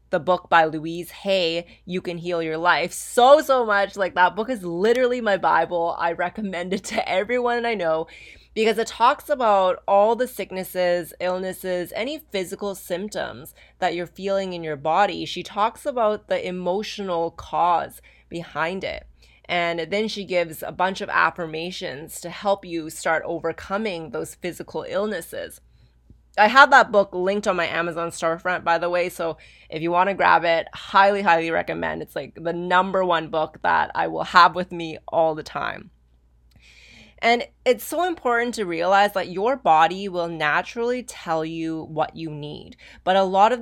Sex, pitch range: female, 165-200 Hz